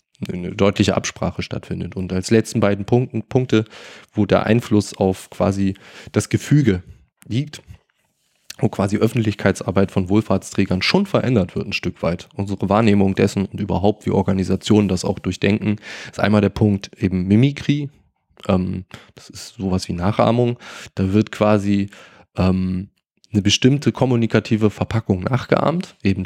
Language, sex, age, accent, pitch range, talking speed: German, male, 20-39, German, 95-110 Hz, 135 wpm